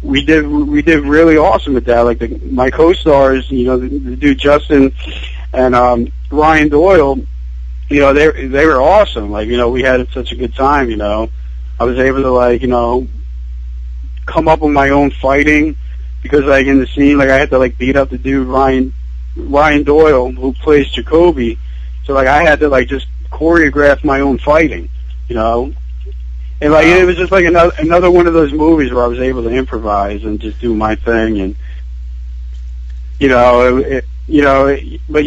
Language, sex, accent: English, male, American